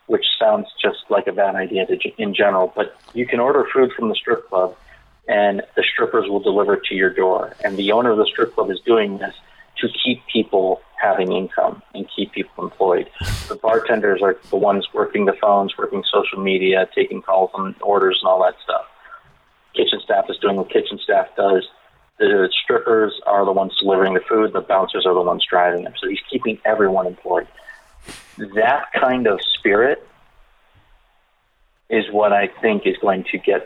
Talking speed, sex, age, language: 185 wpm, male, 40-59, English